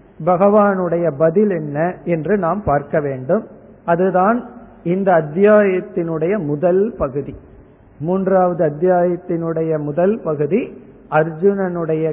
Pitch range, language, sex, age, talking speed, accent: 170-210 Hz, Tamil, male, 50-69, 85 wpm, native